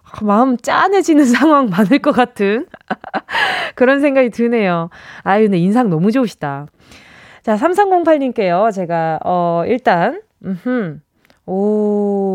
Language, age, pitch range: Korean, 20-39, 190-310 Hz